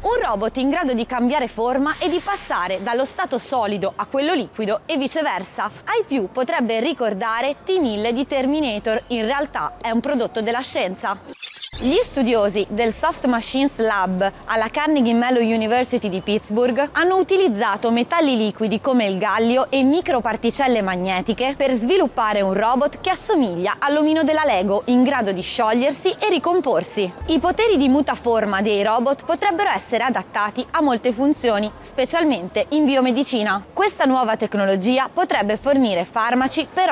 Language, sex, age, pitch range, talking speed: Italian, female, 20-39, 220-295 Hz, 150 wpm